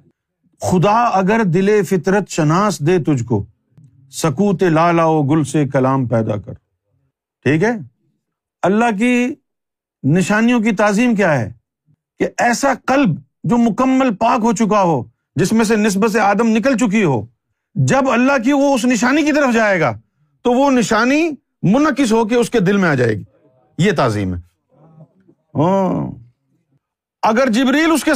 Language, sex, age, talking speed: Urdu, male, 50-69, 160 wpm